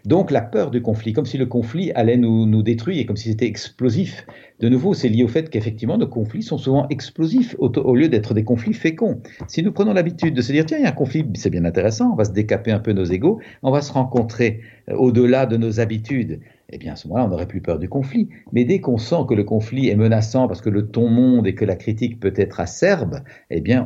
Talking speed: 265 wpm